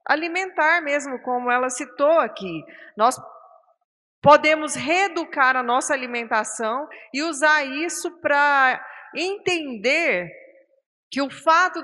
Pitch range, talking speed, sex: 260-340 Hz, 100 wpm, female